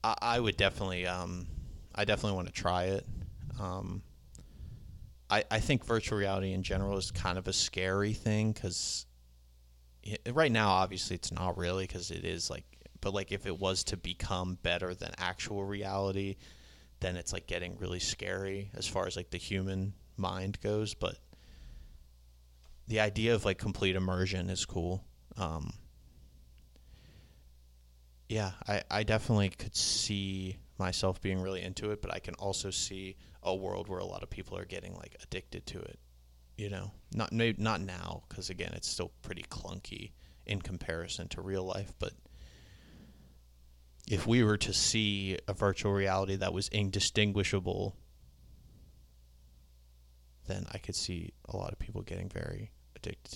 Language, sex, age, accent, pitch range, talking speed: English, male, 30-49, American, 65-100 Hz, 155 wpm